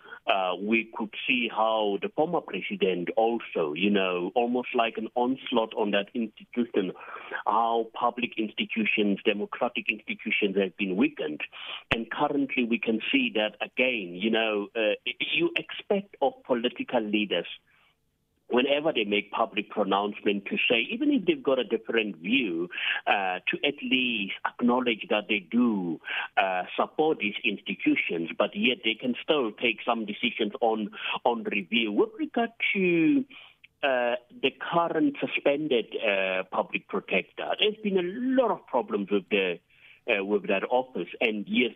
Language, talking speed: English, 145 wpm